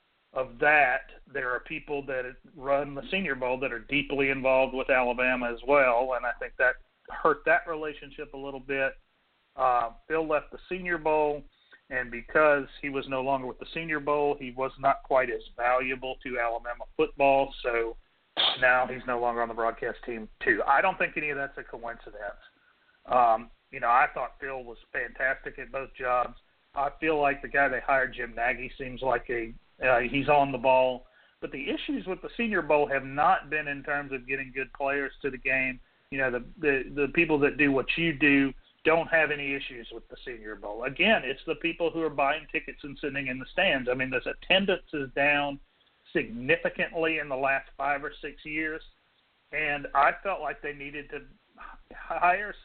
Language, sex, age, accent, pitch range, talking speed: English, male, 40-59, American, 130-155 Hz, 195 wpm